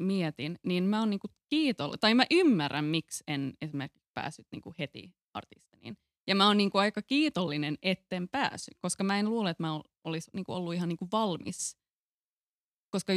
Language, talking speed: Finnish, 170 wpm